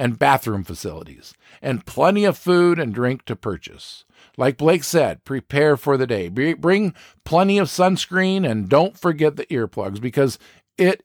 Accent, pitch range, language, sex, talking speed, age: American, 120-185 Hz, English, male, 165 wpm, 50-69